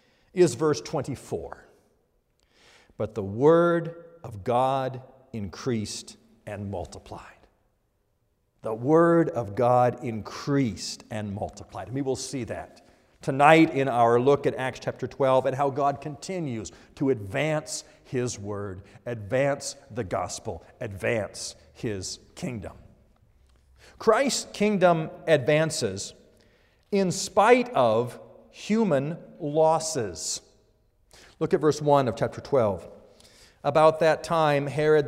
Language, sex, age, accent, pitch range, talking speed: English, male, 50-69, American, 110-150 Hz, 110 wpm